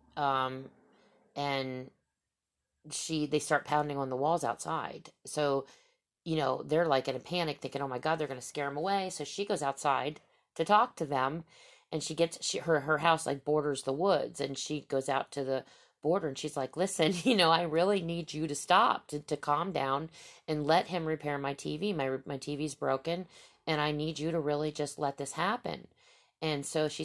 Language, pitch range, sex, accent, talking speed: English, 140-170 Hz, female, American, 205 wpm